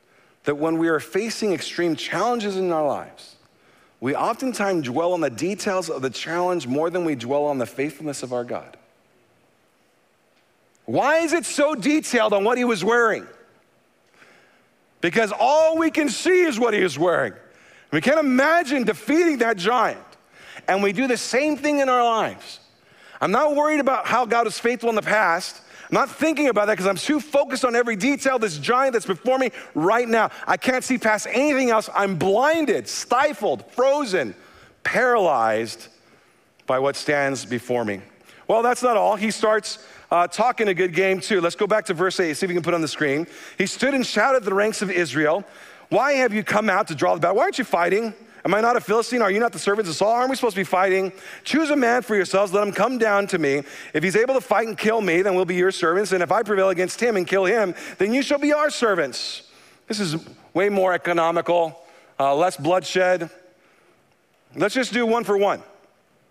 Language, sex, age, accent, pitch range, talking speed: English, male, 50-69, American, 180-245 Hz, 205 wpm